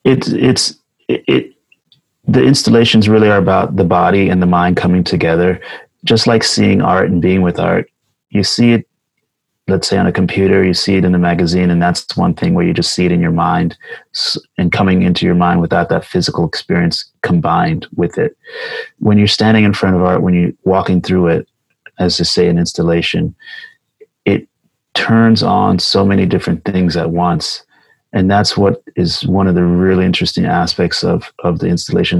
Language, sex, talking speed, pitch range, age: English, male, 190 wpm, 90-100 Hz, 30-49